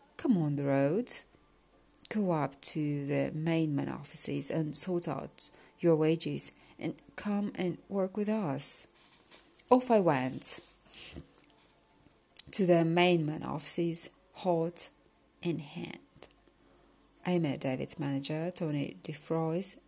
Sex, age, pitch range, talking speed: female, 30-49, 145-190 Hz, 110 wpm